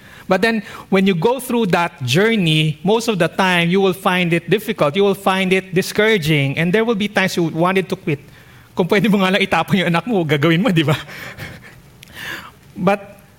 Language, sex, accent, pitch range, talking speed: English, male, Filipino, 130-180 Hz, 185 wpm